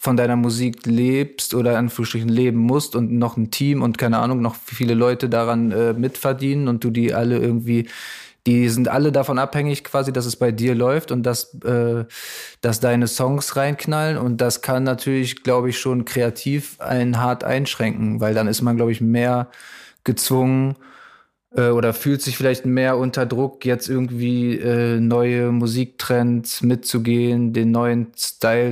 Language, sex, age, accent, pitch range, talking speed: German, male, 20-39, German, 115-125 Hz, 165 wpm